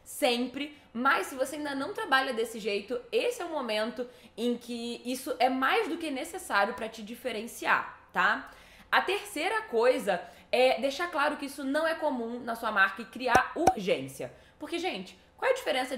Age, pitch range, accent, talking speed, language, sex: 10-29, 220-285 Hz, Brazilian, 180 wpm, Portuguese, female